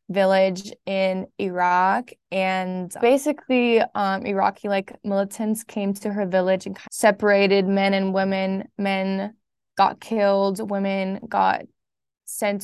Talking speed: 115 wpm